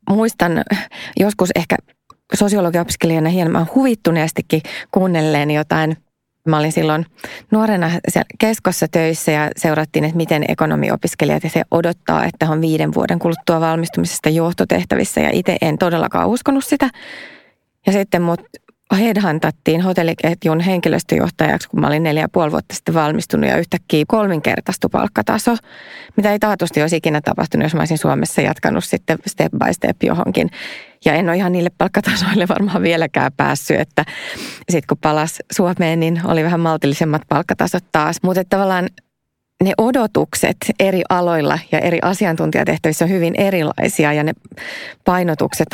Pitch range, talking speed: 160-195 Hz, 135 wpm